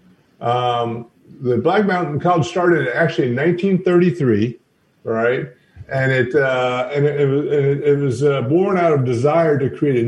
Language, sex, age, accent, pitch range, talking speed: English, male, 50-69, American, 125-160 Hz, 150 wpm